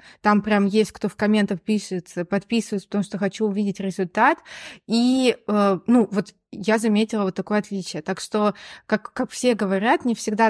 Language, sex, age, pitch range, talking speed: Russian, female, 20-39, 200-235 Hz, 165 wpm